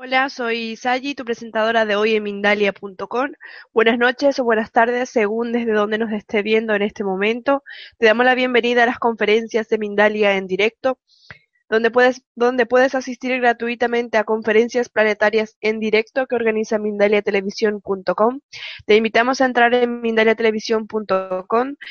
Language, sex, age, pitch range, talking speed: Spanish, female, 20-39, 210-235 Hz, 150 wpm